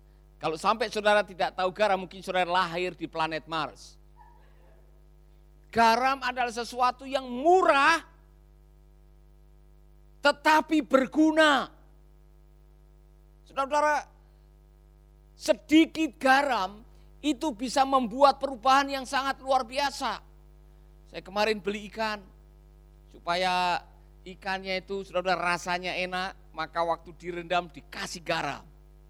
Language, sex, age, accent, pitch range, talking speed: Indonesian, male, 50-69, native, 165-265 Hz, 95 wpm